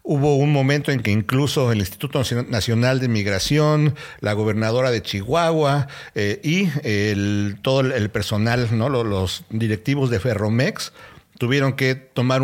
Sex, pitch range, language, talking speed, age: male, 110-140 Hz, Spanish, 130 wpm, 50-69